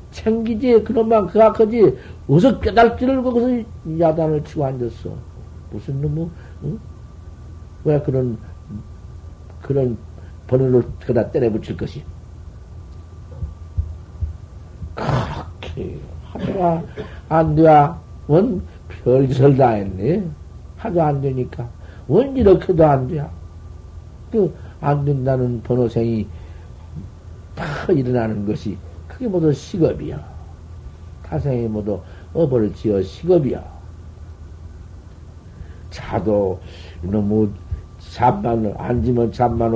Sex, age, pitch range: male, 60-79, 85-125 Hz